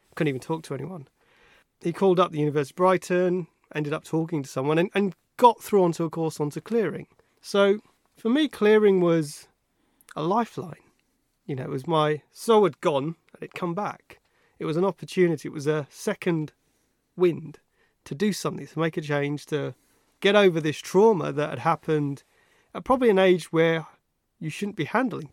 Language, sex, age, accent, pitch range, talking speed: English, male, 30-49, British, 155-205 Hz, 185 wpm